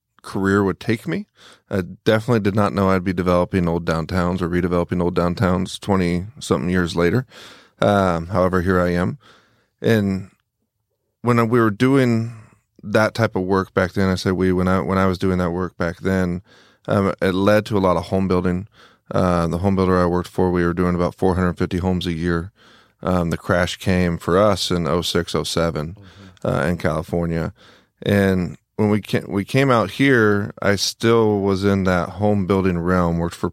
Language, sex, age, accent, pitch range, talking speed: English, male, 30-49, American, 90-105 Hz, 185 wpm